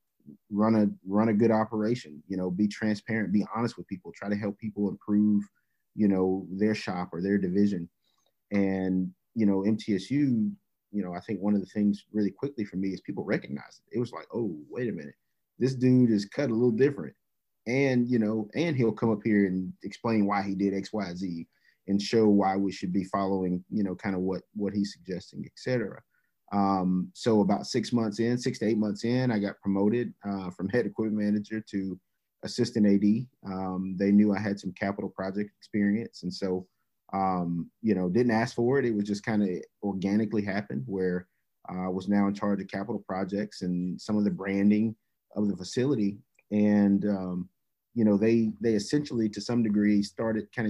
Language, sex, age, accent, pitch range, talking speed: English, male, 30-49, American, 95-110 Hz, 200 wpm